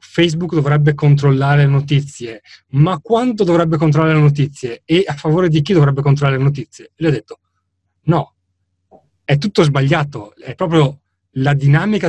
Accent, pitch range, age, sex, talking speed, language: native, 120-155 Hz, 30-49, male, 155 wpm, Italian